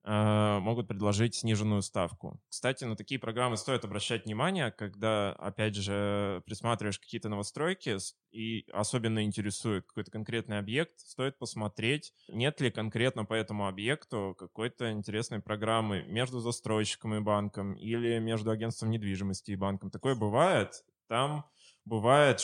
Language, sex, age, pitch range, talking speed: Russian, male, 20-39, 105-125 Hz, 130 wpm